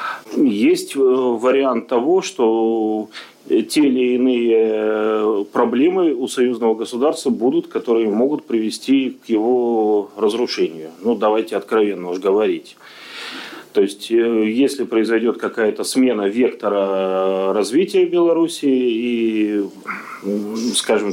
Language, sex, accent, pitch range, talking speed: Russian, male, native, 110-135 Hz, 95 wpm